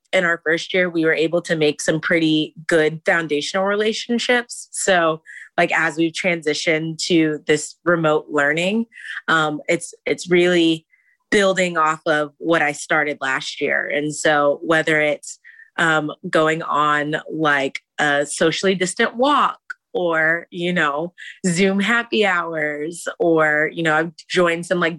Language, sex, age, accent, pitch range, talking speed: English, female, 30-49, American, 160-200 Hz, 145 wpm